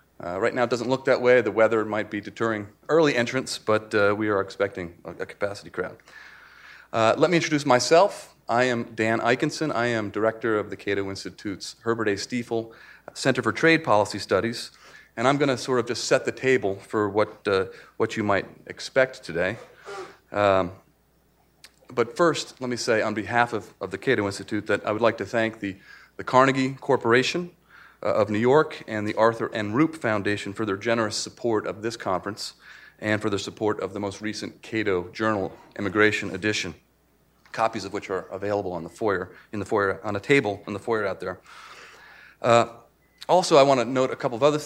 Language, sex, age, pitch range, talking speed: English, male, 40-59, 100-125 Hz, 195 wpm